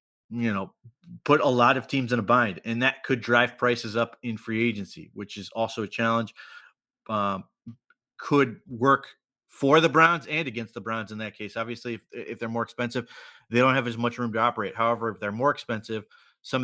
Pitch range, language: 105-120 Hz, English